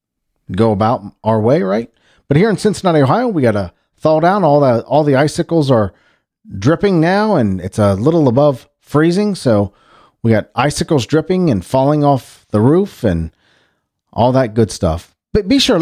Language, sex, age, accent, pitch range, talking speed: English, male, 40-59, American, 110-165 Hz, 180 wpm